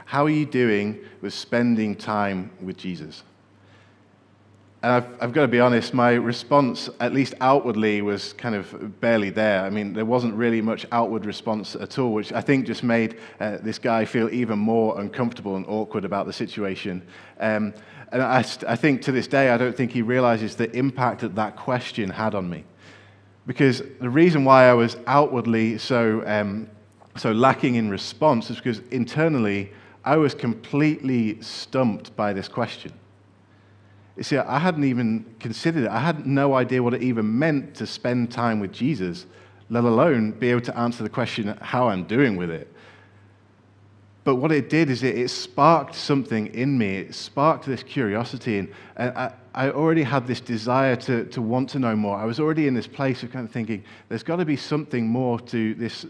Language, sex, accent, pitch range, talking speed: English, male, British, 105-130 Hz, 190 wpm